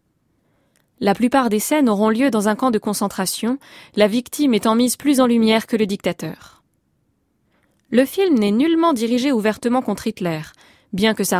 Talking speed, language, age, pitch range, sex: 170 wpm, French, 20-39, 195-250 Hz, female